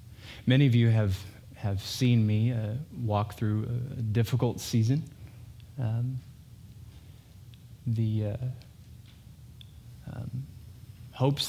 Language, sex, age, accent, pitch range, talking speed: English, male, 20-39, American, 105-120 Hz, 95 wpm